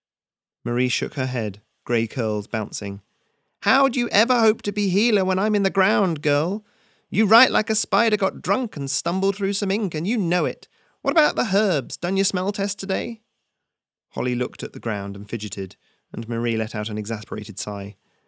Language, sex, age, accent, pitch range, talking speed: English, male, 30-49, British, 110-175 Hz, 195 wpm